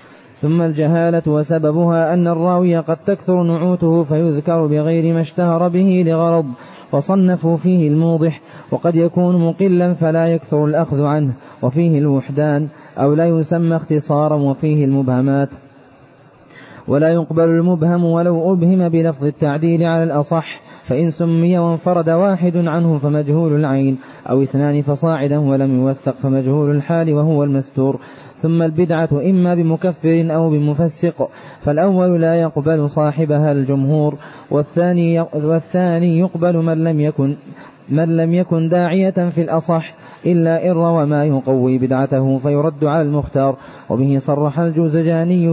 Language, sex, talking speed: Arabic, male, 120 wpm